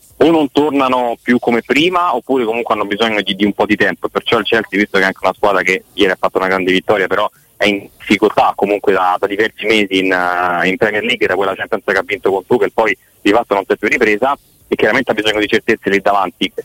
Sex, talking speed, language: male, 250 wpm, Italian